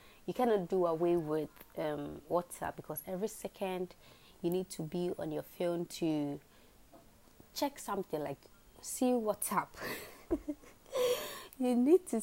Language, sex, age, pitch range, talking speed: English, female, 20-39, 160-200 Hz, 130 wpm